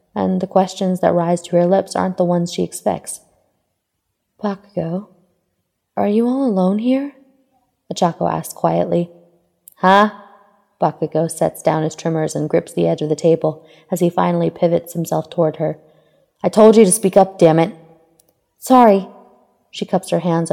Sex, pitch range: female, 155-195 Hz